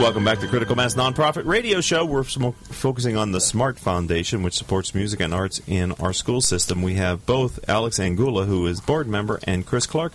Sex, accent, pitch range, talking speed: male, American, 95-130 Hz, 205 wpm